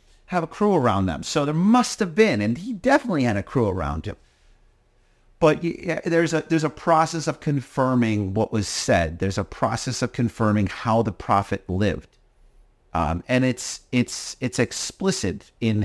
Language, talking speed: English, 180 wpm